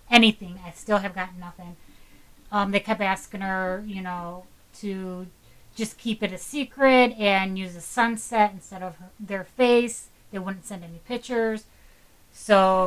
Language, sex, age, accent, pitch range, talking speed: English, female, 30-49, American, 185-220 Hz, 160 wpm